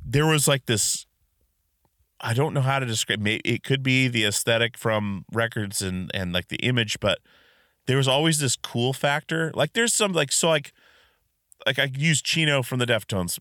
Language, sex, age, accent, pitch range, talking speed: English, male, 30-49, American, 100-135 Hz, 190 wpm